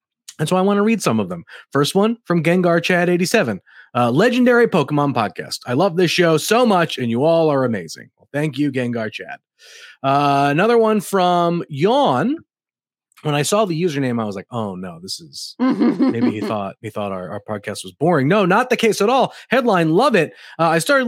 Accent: American